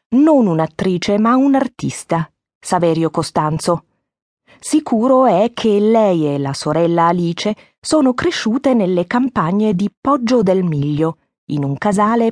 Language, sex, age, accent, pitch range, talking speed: German, female, 30-49, Italian, 160-235 Hz, 120 wpm